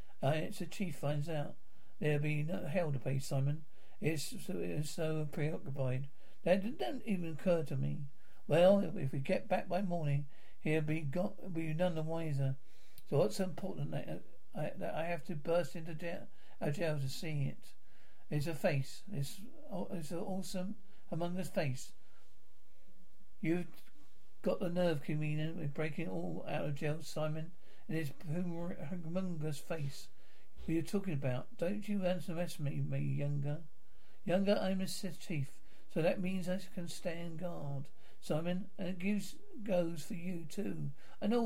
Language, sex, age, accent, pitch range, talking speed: English, male, 60-79, British, 150-185 Hz, 155 wpm